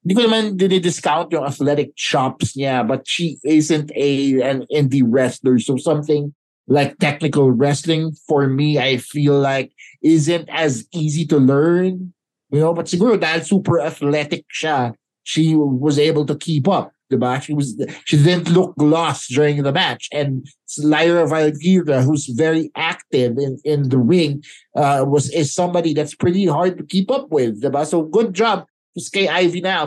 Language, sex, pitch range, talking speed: English, male, 140-165 Hz, 170 wpm